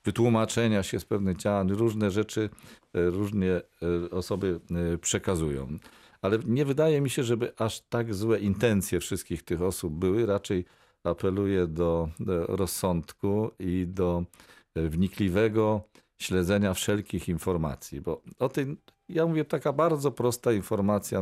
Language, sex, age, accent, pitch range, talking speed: Polish, male, 40-59, native, 90-110 Hz, 120 wpm